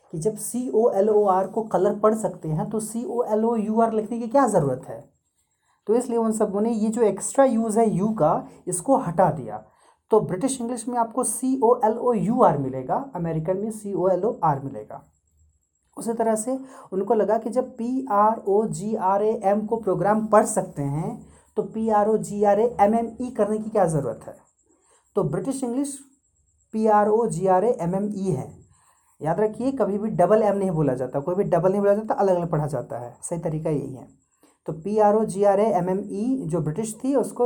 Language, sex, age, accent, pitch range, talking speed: Hindi, male, 30-49, native, 185-230 Hz, 220 wpm